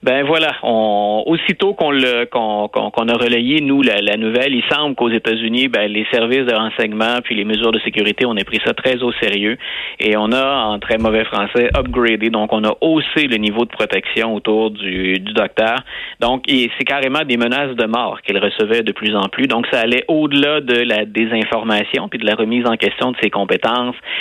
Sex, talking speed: male, 215 wpm